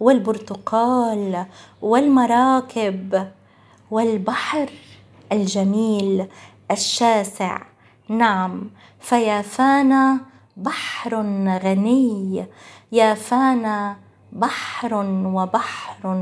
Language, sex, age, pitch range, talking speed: Arabic, female, 20-39, 195-255 Hz, 45 wpm